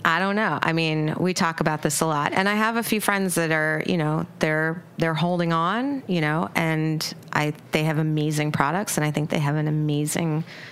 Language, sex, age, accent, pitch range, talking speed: English, female, 30-49, American, 150-170 Hz, 225 wpm